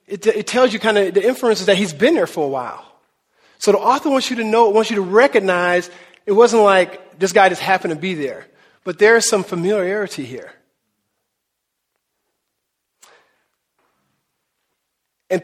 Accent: American